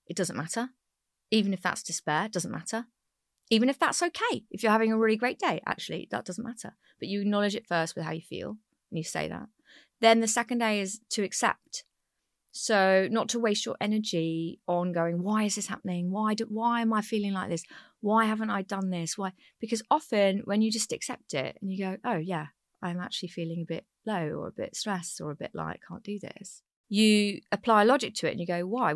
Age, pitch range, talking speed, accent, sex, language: 30-49, 180-225 Hz, 225 wpm, British, female, English